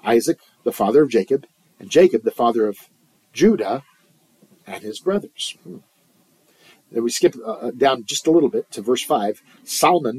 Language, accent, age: English, American, 50-69